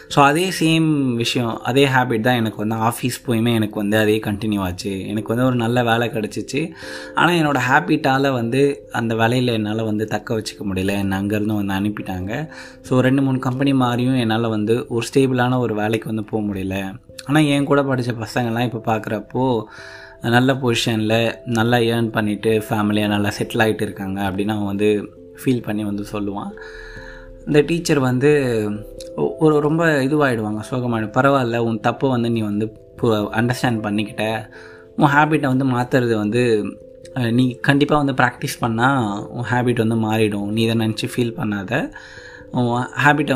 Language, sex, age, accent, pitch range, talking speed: Tamil, male, 20-39, native, 105-130 Hz, 150 wpm